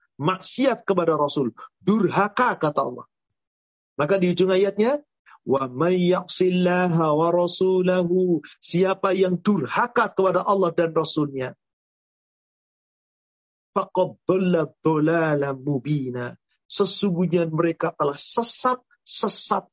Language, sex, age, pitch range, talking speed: Indonesian, male, 40-59, 165-215 Hz, 80 wpm